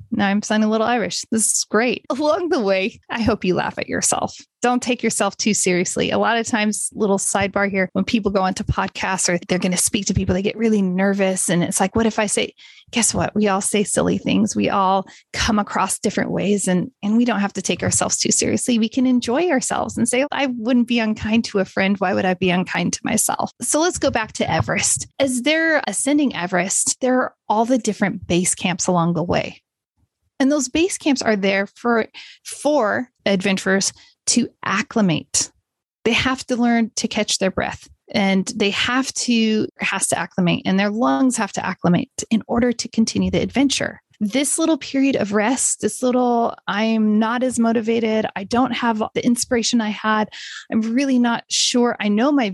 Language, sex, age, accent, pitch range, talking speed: English, female, 30-49, American, 195-245 Hz, 205 wpm